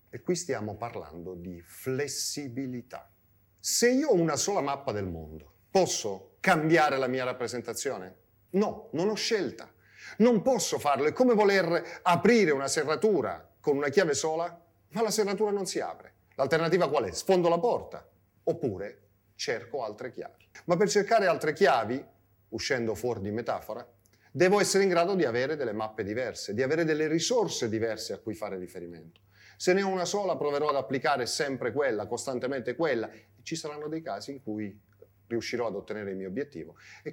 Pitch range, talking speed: 105-170 Hz, 170 wpm